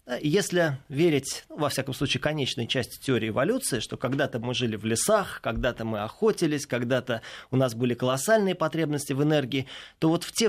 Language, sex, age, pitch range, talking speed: Russian, male, 20-39, 125-175 Hz, 175 wpm